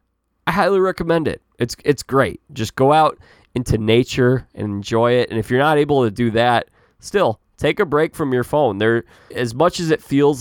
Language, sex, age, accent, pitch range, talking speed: English, male, 20-39, American, 105-135 Hz, 210 wpm